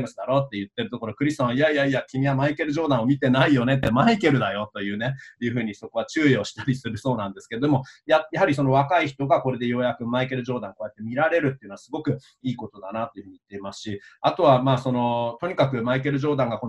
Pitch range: 120-145 Hz